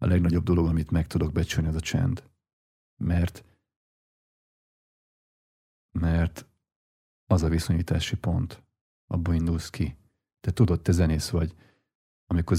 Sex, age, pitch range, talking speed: male, 40-59, 85-100 Hz, 120 wpm